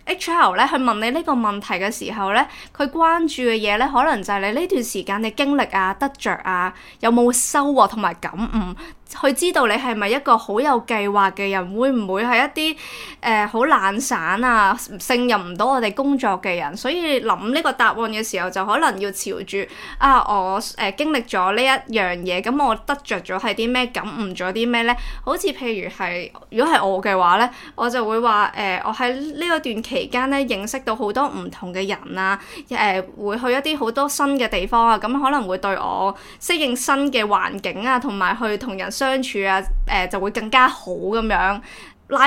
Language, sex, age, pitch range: Chinese, female, 20-39, 200-265 Hz